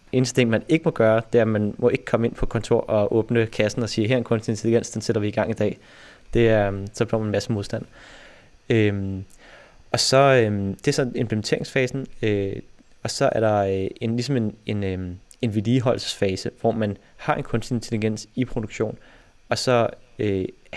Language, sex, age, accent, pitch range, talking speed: Danish, male, 20-39, native, 100-120 Hz, 210 wpm